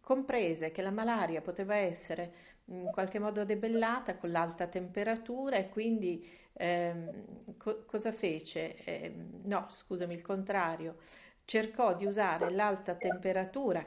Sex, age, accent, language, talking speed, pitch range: female, 40-59, native, Italian, 125 wpm, 160-195 Hz